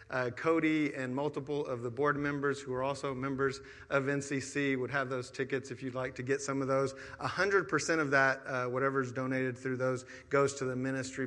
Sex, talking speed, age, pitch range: male, 215 wpm, 40-59, 125-140 Hz